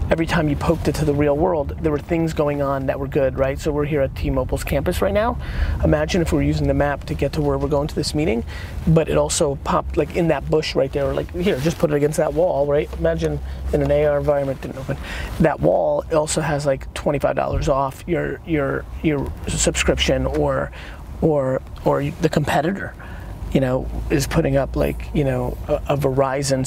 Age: 30-49